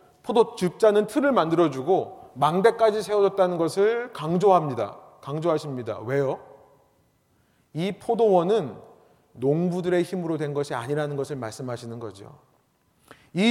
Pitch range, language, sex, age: 155-210 Hz, Korean, male, 30-49